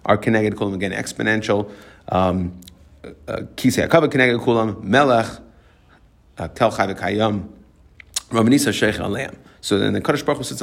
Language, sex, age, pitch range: English, male, 30-49, 95-110 Hz